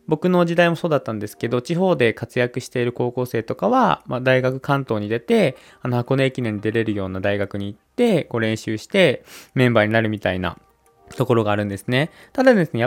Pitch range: 115-175 Hz